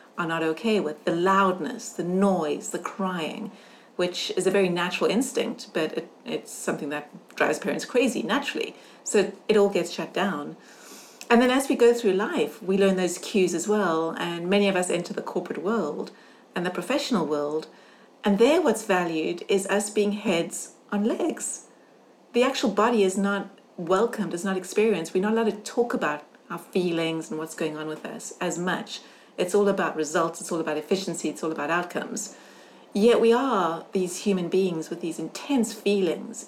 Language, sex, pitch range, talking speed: English, female, 175-220 Hz, 185 wpm